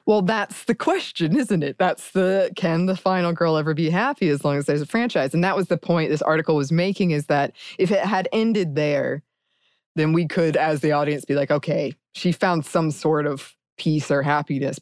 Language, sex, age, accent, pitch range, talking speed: English, female, 20-39, American, 155-195 Hz, 220 wpm